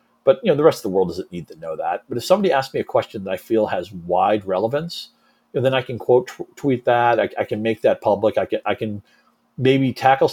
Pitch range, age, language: 100-125 Hz, 40-59, English